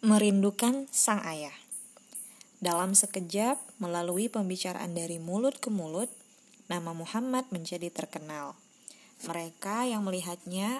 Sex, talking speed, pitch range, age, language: female, 100 wpm, 180-235 Hz, 20-39, Indonesian